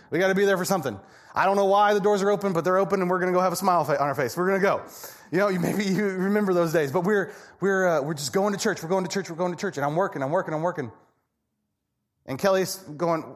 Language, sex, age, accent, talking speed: English, male, 30-49, American, 310 wpm